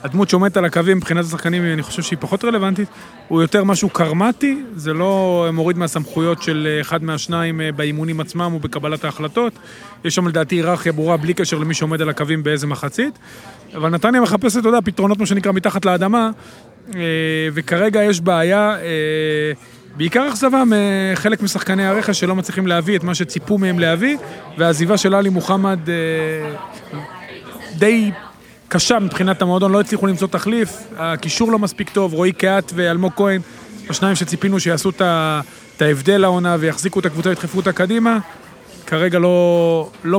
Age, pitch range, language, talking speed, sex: 30-49, 165-200 Hz, Hebrew, 135 wpm, male